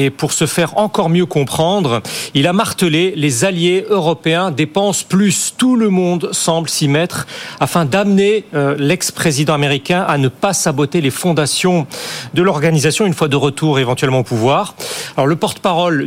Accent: French